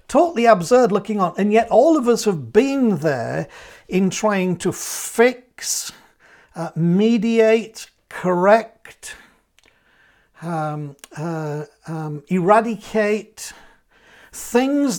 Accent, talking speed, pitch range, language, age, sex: British, 95 wpm, 170-230 Hz, English, 50-69, male